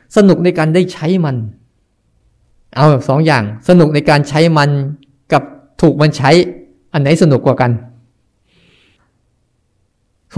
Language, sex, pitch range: Thai, male, 130-175 Hz